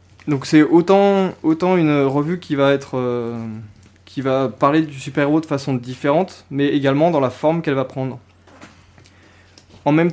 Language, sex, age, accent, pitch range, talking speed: French, male, 20-39, French, 130-170 Hz, 165 wpm